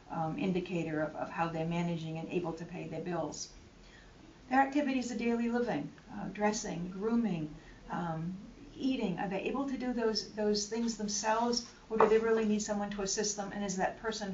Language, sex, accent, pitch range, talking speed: English, female, American, 175-220 Hz, 190 wpm